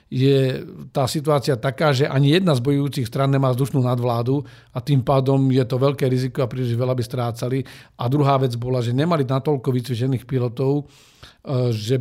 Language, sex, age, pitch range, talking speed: Slovak, male, 50-69, 125-140 Hz, 175 wpm